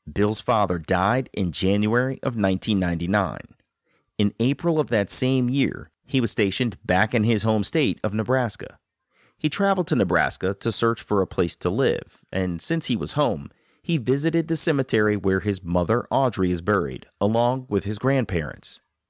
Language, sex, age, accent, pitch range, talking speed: English, male, 30-49, American, 100-135 Hz, 165 wpm